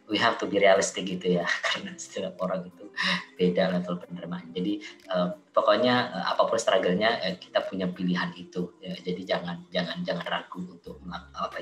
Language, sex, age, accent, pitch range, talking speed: Indonesian, female, 20-39, native, 90-110 Hz, 170 wpm